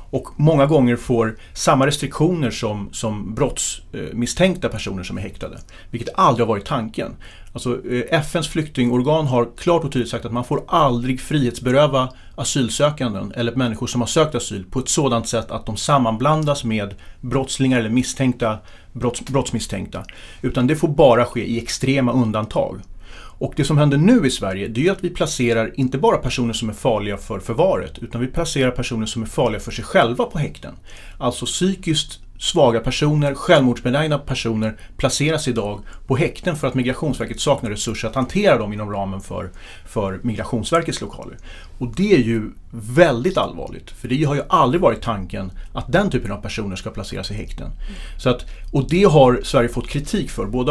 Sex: male